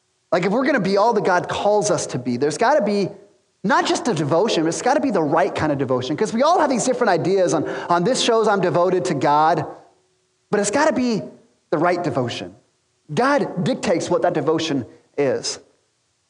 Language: English